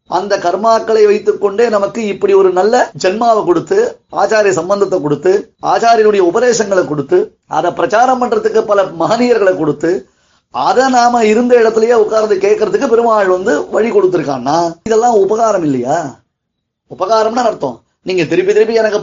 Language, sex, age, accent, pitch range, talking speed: Tamil, male, 30-49, native, 180-215 Hz, 120 wpm